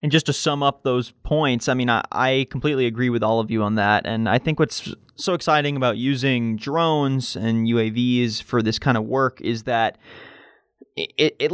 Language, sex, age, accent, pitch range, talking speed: English, male, 20-39, American, 115-140 Hz, 200 wpm